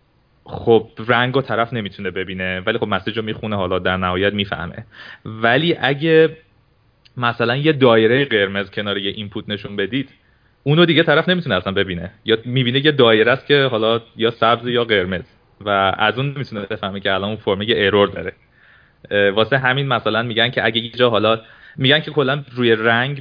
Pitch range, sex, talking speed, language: 100-130 Hz, male, 175 wpm, Persian